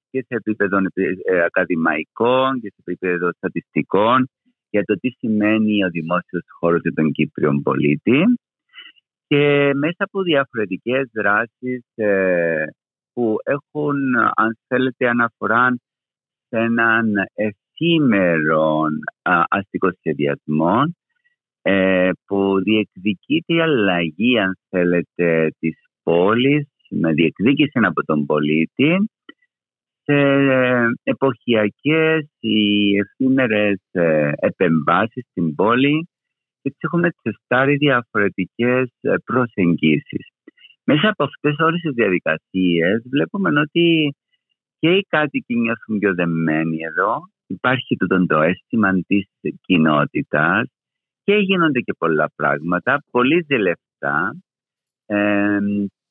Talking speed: 90 wpm